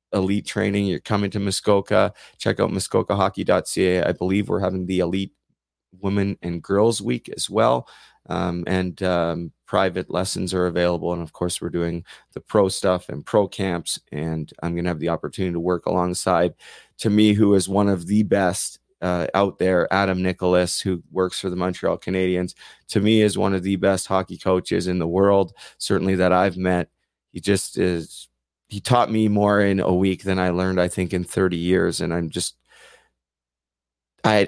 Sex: male